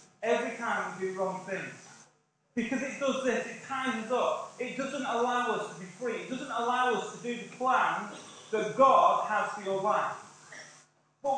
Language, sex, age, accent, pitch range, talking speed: English, male, 30-49, British, 215-265 Hz, 190 wpm